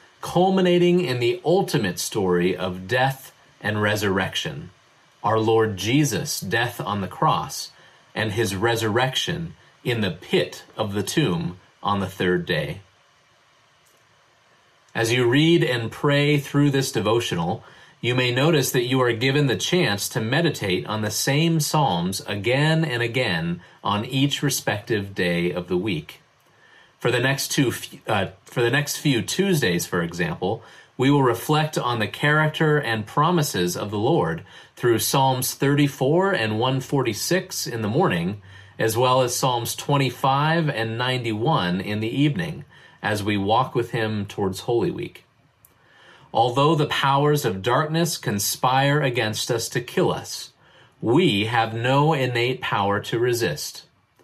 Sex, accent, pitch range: male, American, 110-145 Hz